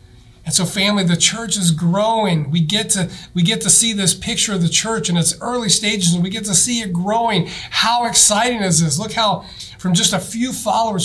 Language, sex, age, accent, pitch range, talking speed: English, male, 40-59, American, 140-180 Hz, 225 wpm